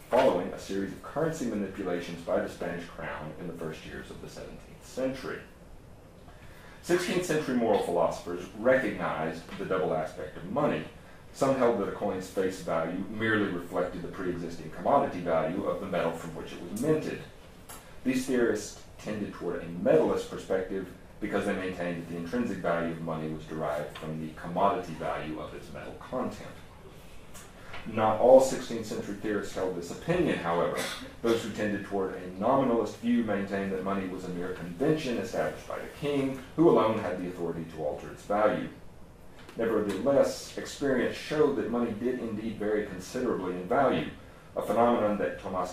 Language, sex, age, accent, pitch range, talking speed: English, male, 40-59, American, 85-110 Hz, 165 wpm